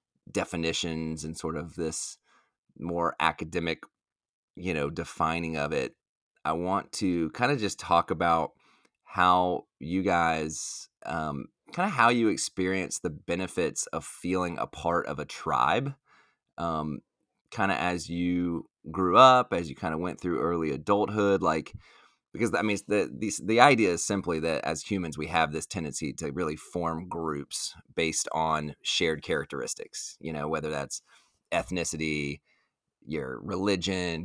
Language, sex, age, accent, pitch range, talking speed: English, male, 30-49, American, 80-90 Hz, 150 wpm